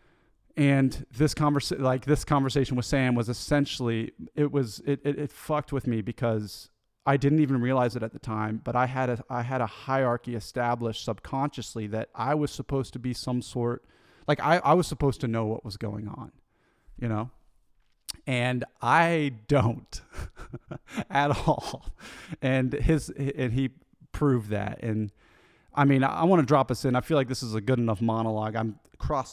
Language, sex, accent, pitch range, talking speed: English, male, American, 110-140 Hz, 185 wpm